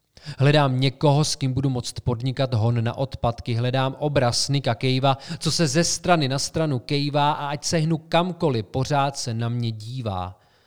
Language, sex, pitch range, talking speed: Czech, male, 120-150 Hz, 170 wpm